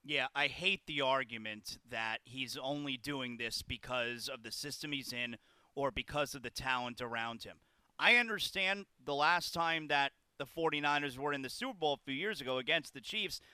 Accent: American